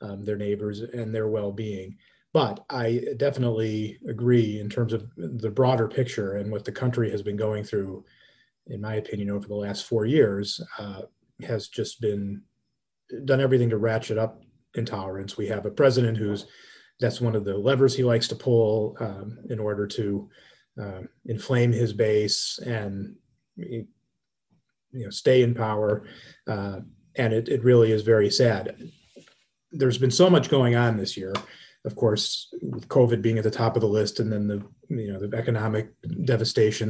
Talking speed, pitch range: 170 wpm, 105-125 Hz